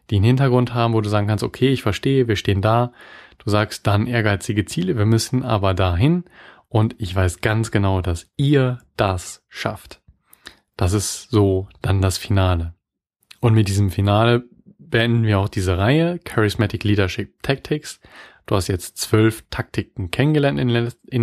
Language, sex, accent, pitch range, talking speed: German, male, German, 100-115 Hz, 160 wpm